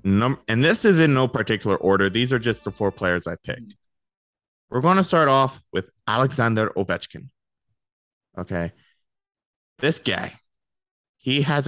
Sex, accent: male, American